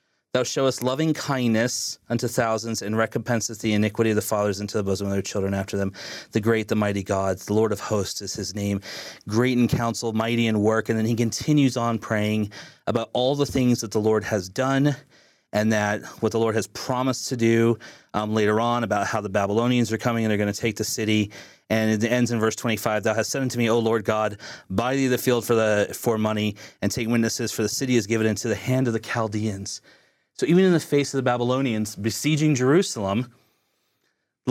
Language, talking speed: English, 220 wpm